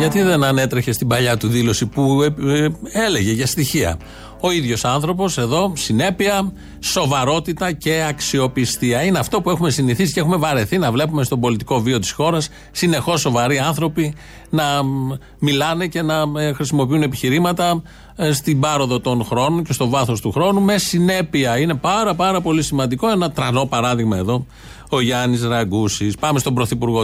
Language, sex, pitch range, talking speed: Greek, male, 115-155 Hz, 155 wpm